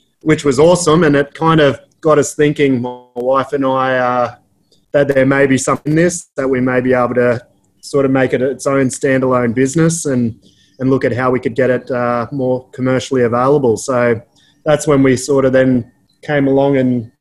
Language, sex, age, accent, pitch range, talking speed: English, male, 20-39, Australian, 125-145 Hz, 205 wpm